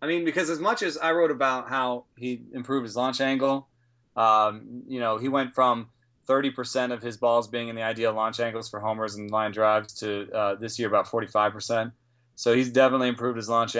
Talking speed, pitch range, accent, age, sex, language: 210 wpm, 110-125 Hz, American, 30-49, male, English